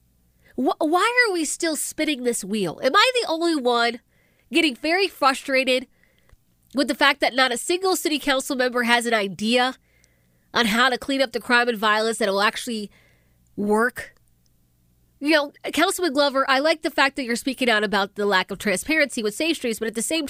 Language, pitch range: English, 230-355 Hz